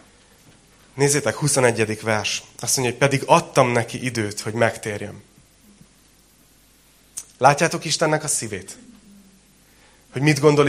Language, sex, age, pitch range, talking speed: Hungarian, male, 30-49, 110-150 Hz, 105 wpm